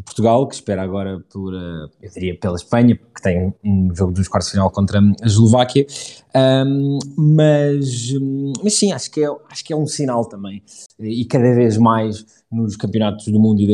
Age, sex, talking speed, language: 20-39, male, 190 wpm, Portuguese